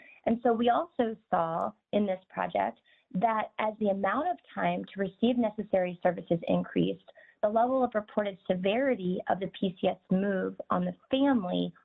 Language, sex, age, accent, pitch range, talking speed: English, female, 20-39, American, 190-245 Hz, 155 wpm